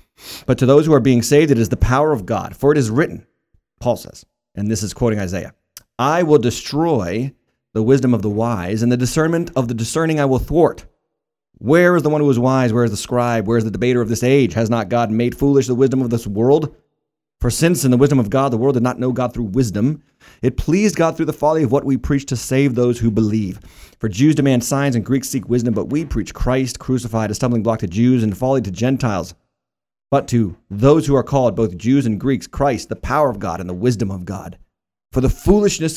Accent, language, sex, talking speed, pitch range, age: American, English, male, 240 wpm, 115-140 Hz, 30-49